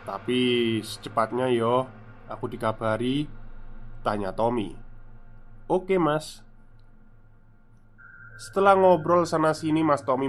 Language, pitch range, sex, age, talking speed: Indonesian, 110-140 Hz, male, 20-39, 95 wpm